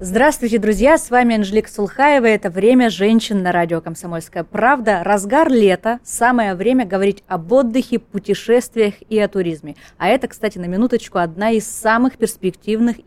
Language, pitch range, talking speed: Russian, 185-235 Hz, 150 wpm